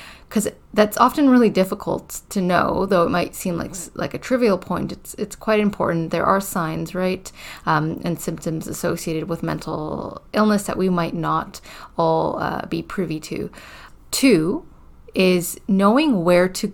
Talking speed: 160 wpm